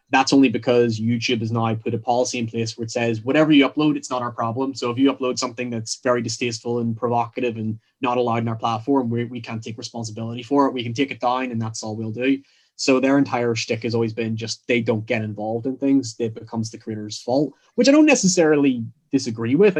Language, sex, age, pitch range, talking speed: English, male, 20-39, 115-135 Hz, 240 wpm